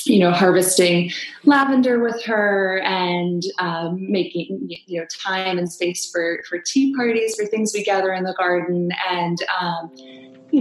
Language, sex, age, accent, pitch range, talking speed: English, female, 20-39, American, 170-210 Hz, 160 wpm